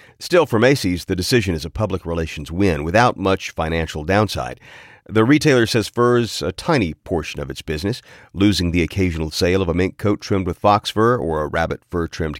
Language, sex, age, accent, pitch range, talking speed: English, male, 40-59, American, 85-110 Hz, 200 wpm